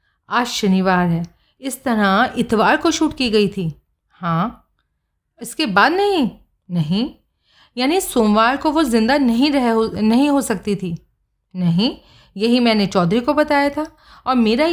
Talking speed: 145 wpm